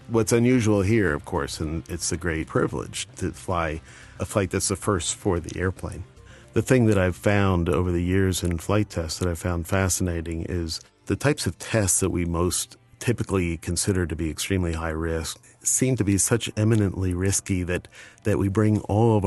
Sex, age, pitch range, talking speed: male, 50-69, 85-105 Hz, 195 wpm